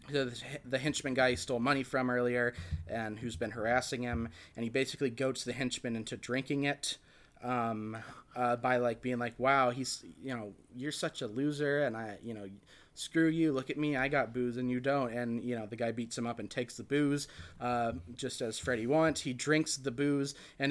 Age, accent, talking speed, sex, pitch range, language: 30-49, American, 215 wpm, male, 115-135 Hz, English